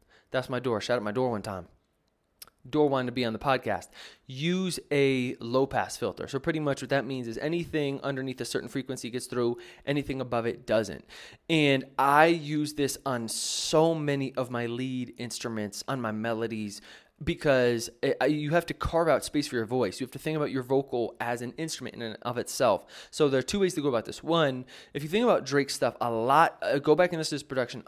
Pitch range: 120-150 Hz